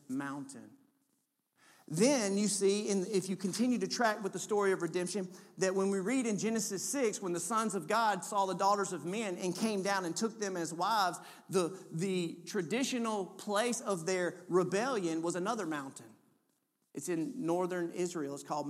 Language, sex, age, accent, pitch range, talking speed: English, male, 40-59, American, 170-225 Hz, 180 wpm